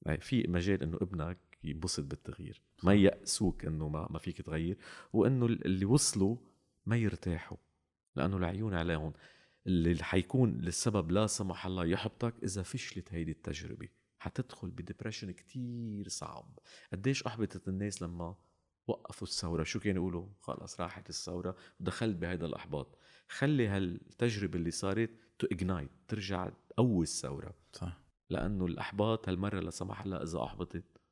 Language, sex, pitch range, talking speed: Arabic, male, 85-105 Hz, 125 wpm